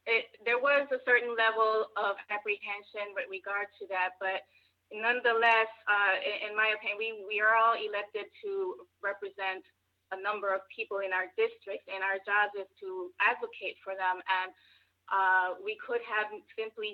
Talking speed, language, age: 165 wpm, English, 20-39